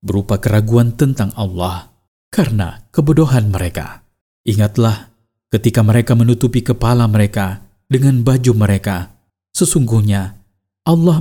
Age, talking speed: 40-59, 95 wpm